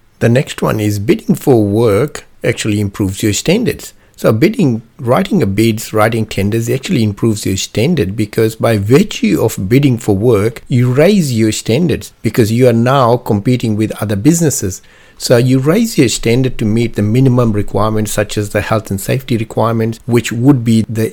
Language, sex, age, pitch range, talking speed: English, male, 60-79, 105-130 Hz, 175 wpm